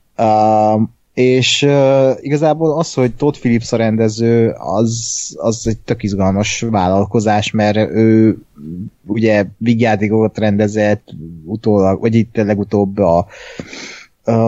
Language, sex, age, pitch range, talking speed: Hungarian, male, 20-39, 105-120 Hz, 125 wpm